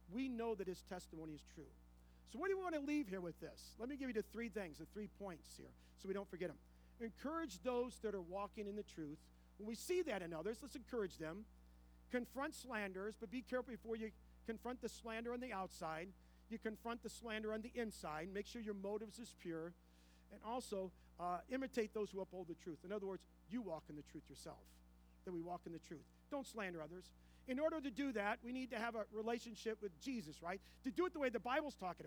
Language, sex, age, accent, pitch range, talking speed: English, male, 50-69, American, 165-245 Hz, 235 wpm